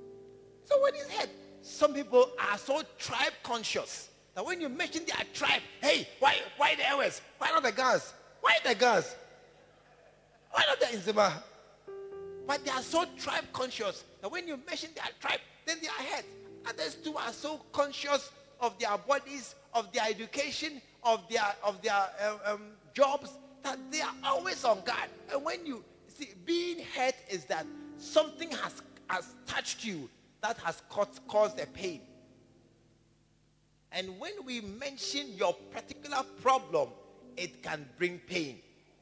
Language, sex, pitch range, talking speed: English, male, 195-300 Hz, 155 wpm